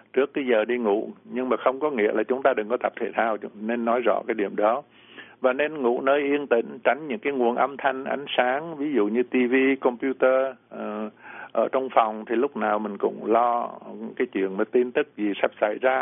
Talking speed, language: 230 wpm, Vietnamese